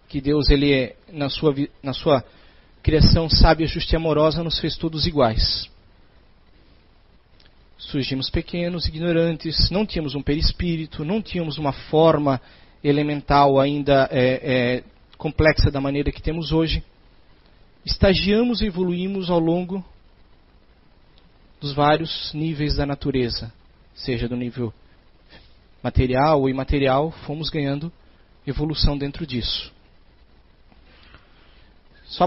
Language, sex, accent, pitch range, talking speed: Portuguese, male, Brazilian, 125-165 Hz, 110 wpm